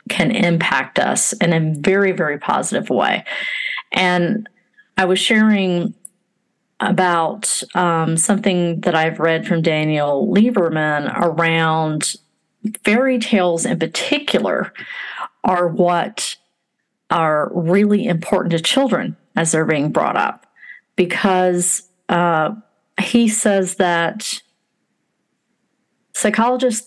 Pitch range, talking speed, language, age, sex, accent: 165-210 Hz, 100 wpm, English, 40-59, female, American